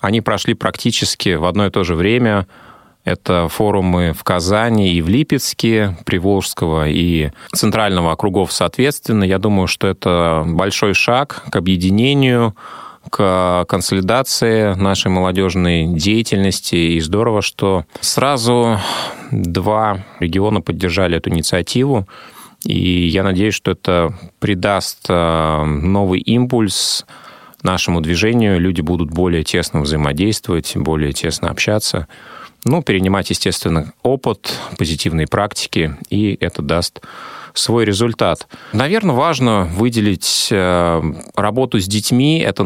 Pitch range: 85-105 Hz